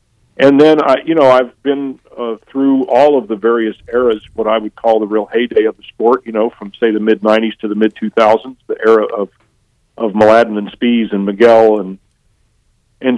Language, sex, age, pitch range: English, male, 50-69, 110-125 Hz